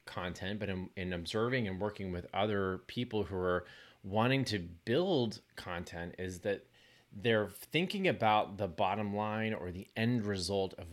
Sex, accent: male, American